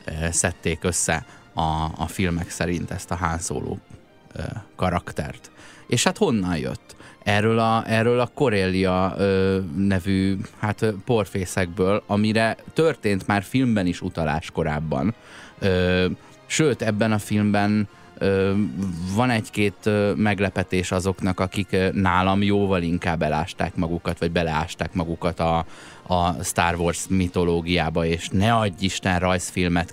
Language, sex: Hungarian, male